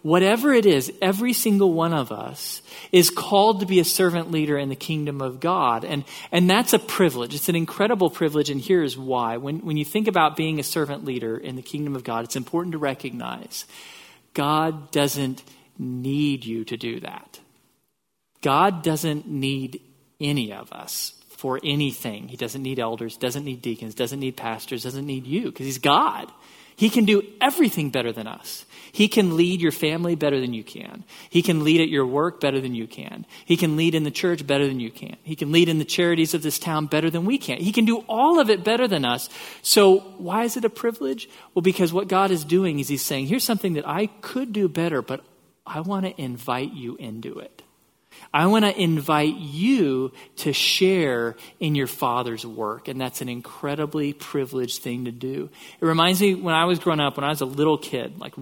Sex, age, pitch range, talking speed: male, 40-59, 130-180 Hz, 210 wpm